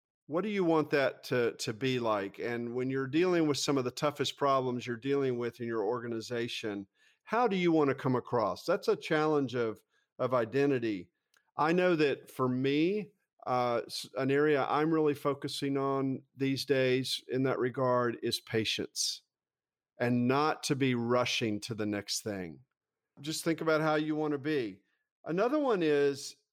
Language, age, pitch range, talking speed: English, 50-69, 120-155 Hz, 175 wpm